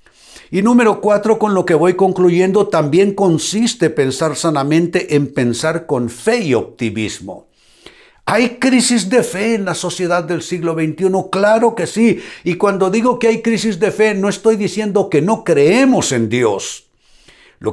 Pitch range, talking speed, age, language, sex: 155-215 Hz, 165 wpm, 60-79, Spanish, male